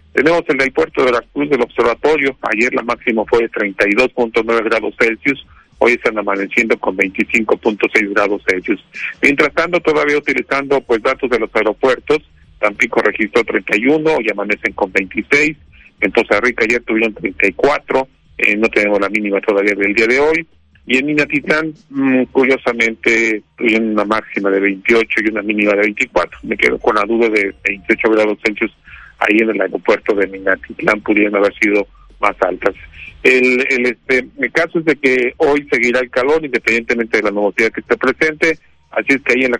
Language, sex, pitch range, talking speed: Spanish, male, 105-135 Hz, 175 wpm